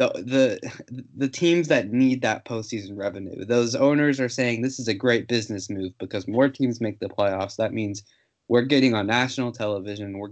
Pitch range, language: 105-125 Hz, English